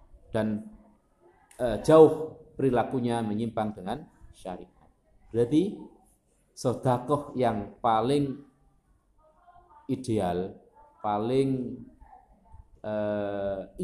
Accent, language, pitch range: native, Indonesian, 105-150 Hz